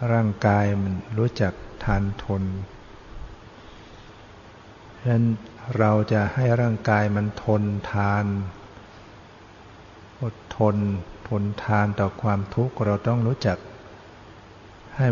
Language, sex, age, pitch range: Thai, male, 60-79, 100-115 Hz